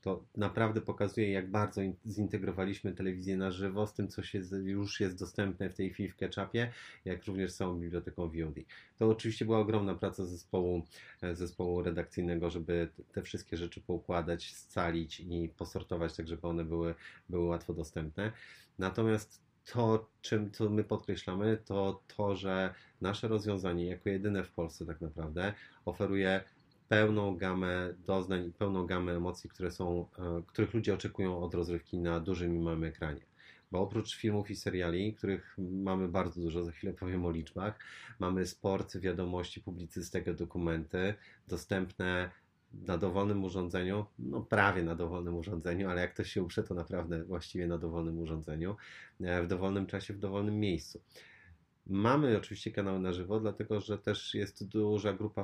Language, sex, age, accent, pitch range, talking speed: Polish, male, 30-49, native, 90-105 Hz, 155 wpm